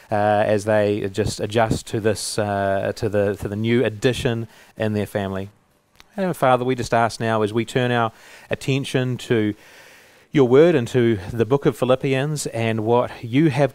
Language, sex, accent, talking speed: English, male, Australian, 180 wpm